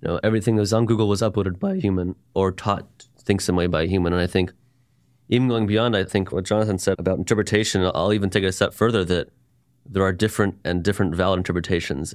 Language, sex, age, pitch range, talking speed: English, male, 30-49, 90-110 Hz, 235 wpm